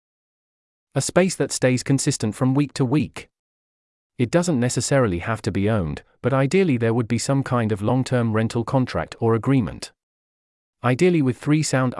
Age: 40-59